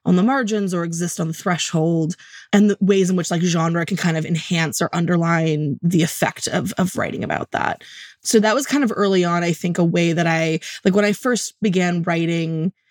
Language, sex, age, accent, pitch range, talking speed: English, female, 20-39, American, 165-195 Hz, 220 wpm